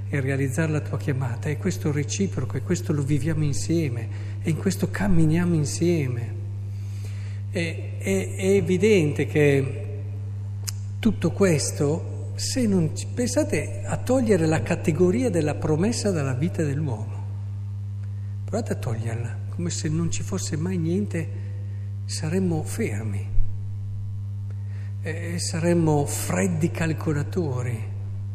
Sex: male